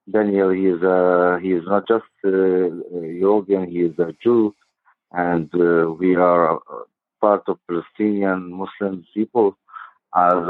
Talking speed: 145 wpm